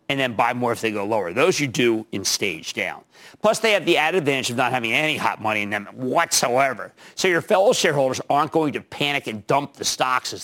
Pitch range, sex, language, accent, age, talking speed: 115-170 Hz, male, English, American, 50-69, 240 wpm